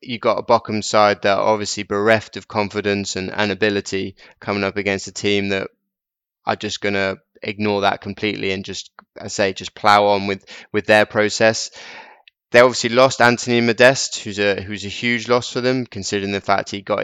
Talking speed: 195 wpm